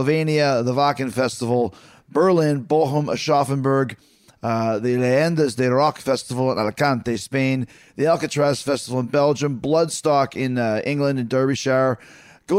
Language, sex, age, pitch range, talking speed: English, male, 30-49, 115-145 Hz, 125 wpm